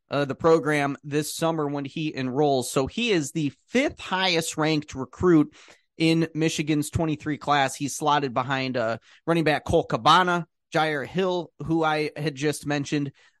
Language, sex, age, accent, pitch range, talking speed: English, male, 30-49, American, 130-160 Hz, 155 wpm